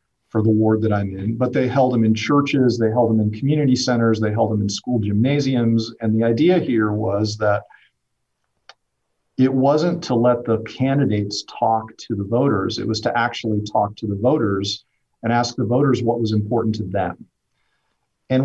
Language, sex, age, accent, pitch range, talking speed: English, male, 50-69, American, 110-125 Hz, 190 wpm